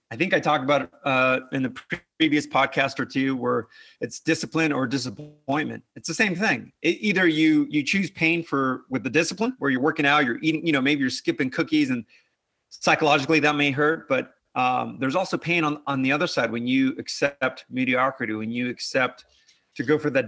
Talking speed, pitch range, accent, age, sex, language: 205 wpm, 130-155 Hz, American, 30-49, male, English